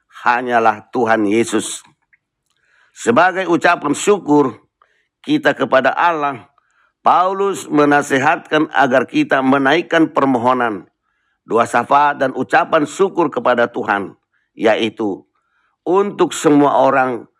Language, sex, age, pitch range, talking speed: Indonesian, male, 50-69, 120-160 Hz, 90 wpm